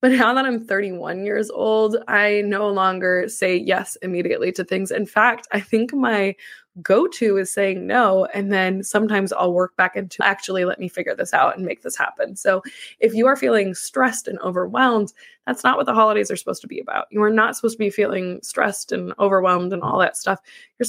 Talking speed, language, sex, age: 210 wpm, English, female, 20-39